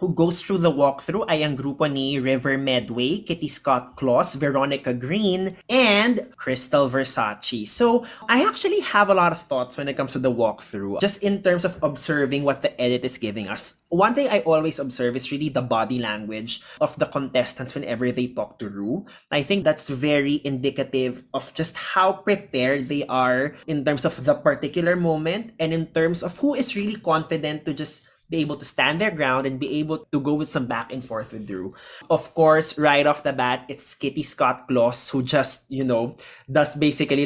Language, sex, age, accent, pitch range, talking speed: Filipino, male, 20-39, native, 130-170 Hz, 200 wpm